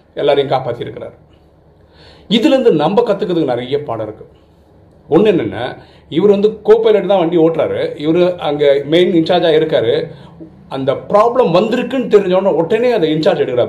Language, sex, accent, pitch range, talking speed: Tamil, male, native, 135-180 Hz, 135 wpm